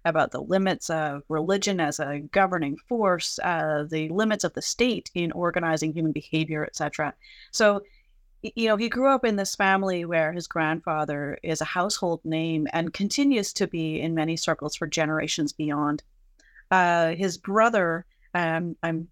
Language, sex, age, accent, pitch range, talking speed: English, female, 30-49, American, 160-205 Hz, 160 wpm